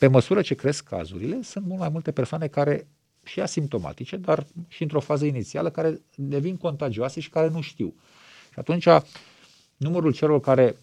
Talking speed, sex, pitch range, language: 165 wpm, male, 120-160 Hz, Romanian